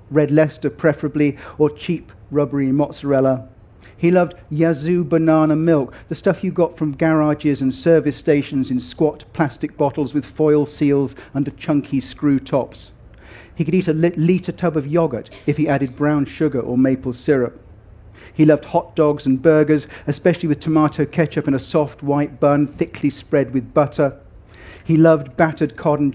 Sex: male